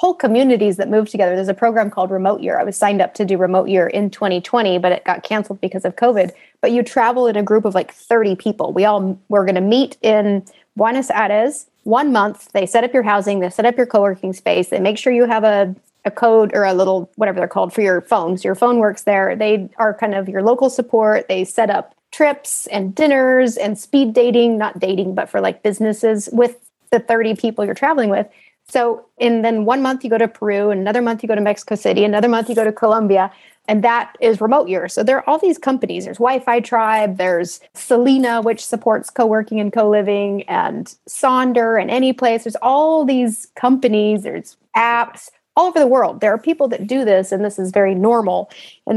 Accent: American